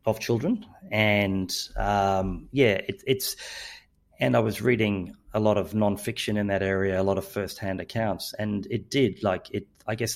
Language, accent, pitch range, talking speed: English, Australian, 95-115 Hz, 175 wpm